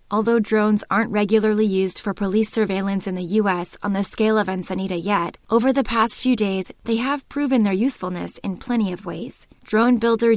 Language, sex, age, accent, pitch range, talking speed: English, female, 20-39, American, 195-230 Hz, 190 wpm